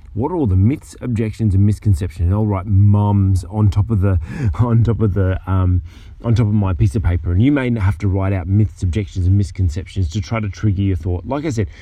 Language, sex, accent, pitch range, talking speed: English, male, Australian, 95-115 Hz, 245 wpm